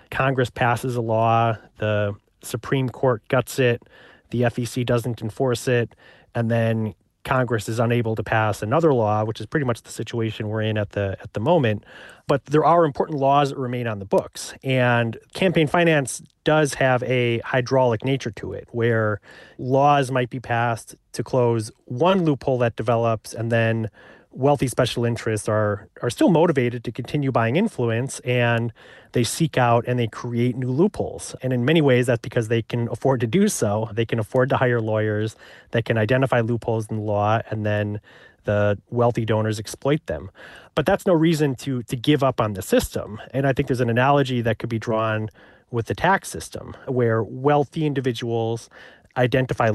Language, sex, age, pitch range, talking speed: English, male, 30-49, 115-130 Hz, 180 wpm